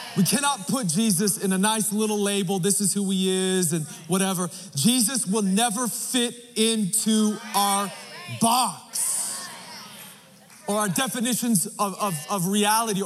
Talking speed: 135 wpm